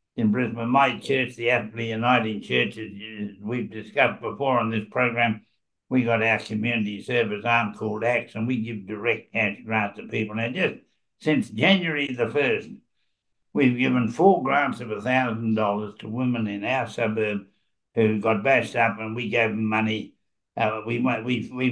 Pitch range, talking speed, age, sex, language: 110-125 Hz, 175 wpm, 60-79, male, English